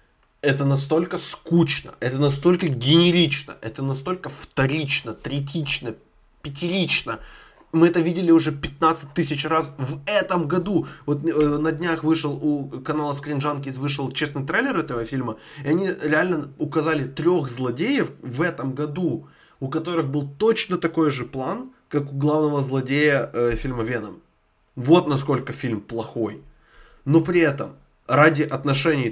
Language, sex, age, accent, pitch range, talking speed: Ukrainian, male, 20-39, native, 120-160 Hz, 140 wpm